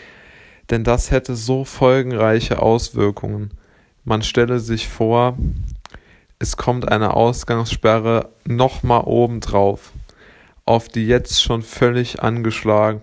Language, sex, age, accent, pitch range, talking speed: German, male, 20-39, German, 100-115 Hz, 100 wpm